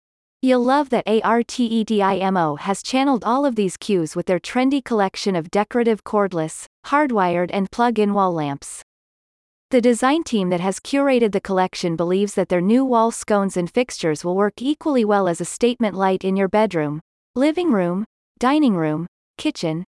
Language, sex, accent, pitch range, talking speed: English, female, American, 185-240 Hz, 160 wpm